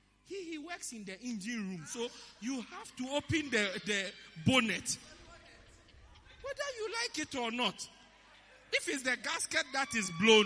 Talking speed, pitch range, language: 160 wpm, 235-320 Hz, English